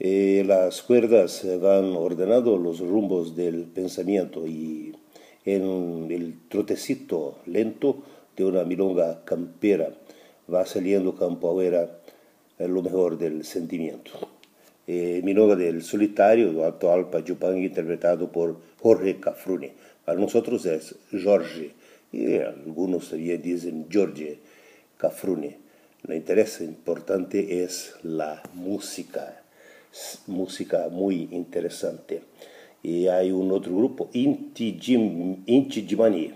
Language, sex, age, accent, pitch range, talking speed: Portuguese, male, 50-69, Italian, 85-100 Hz, 100 wpm